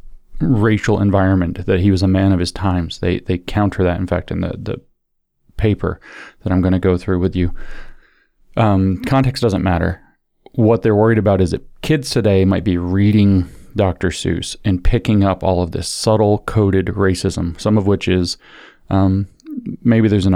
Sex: male